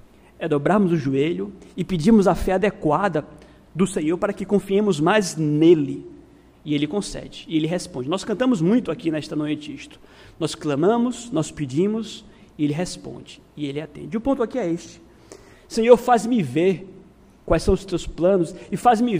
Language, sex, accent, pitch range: Portuguese, male, Brazilian, 165-220 Hz